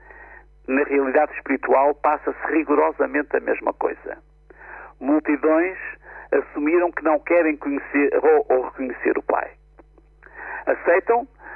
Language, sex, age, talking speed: Portuguese, male, 50-69, 105 wpm